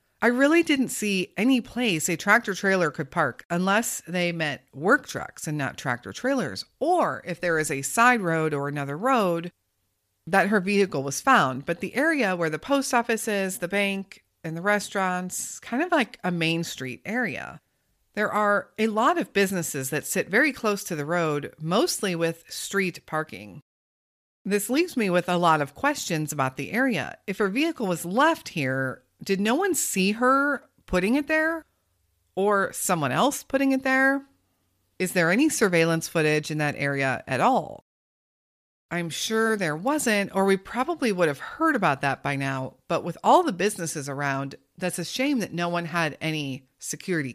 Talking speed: 180 wpm